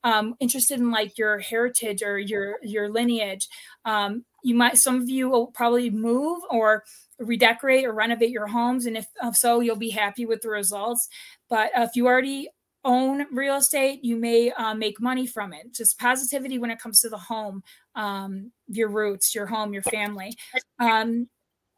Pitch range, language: 220-250 Hz, English